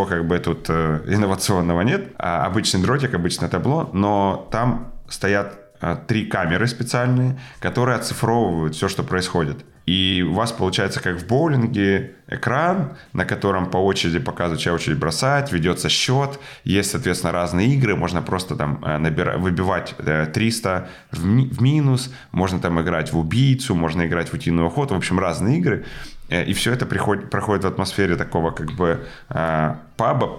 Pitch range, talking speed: 85-120 Hz, 160 wpm